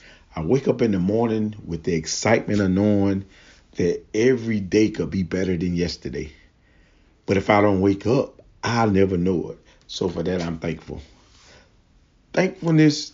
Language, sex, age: English, male, 40-59